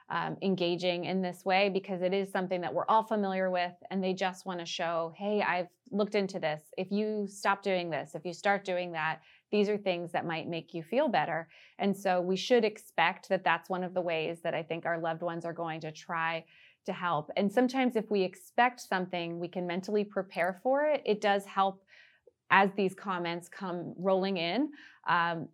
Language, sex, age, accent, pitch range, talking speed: English, female, 30-49, American, 175-210 Hz, 210 wpm